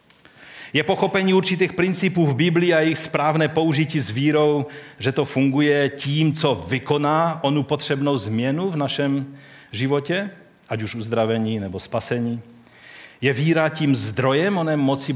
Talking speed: 140 wpm